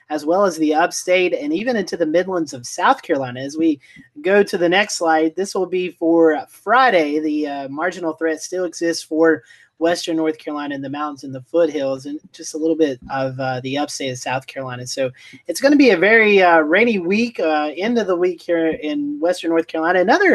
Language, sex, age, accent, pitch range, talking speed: English, male, 30-49, American, 150-180 Hz, 220 wpm